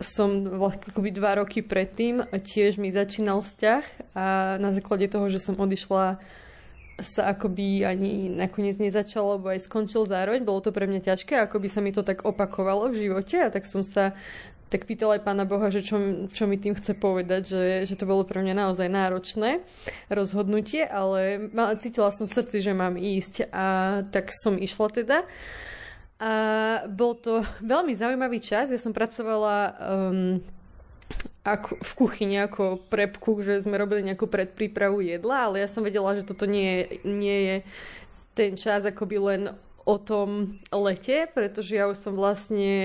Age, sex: 20-39, female